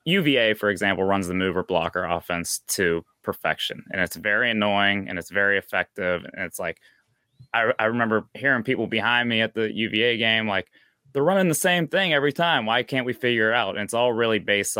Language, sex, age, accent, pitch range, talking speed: English, male, 20-39, American, 100-125 Hz, 205 wpm